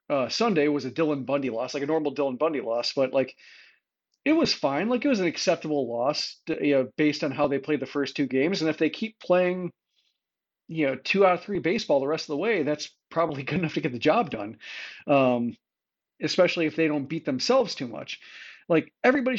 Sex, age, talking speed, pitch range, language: male, 40-59, 225 wpm, 145-205 Hz, English